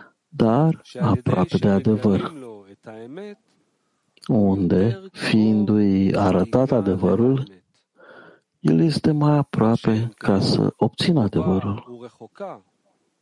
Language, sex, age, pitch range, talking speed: English, male, 50-69, 105-155 Hz, 75 wpm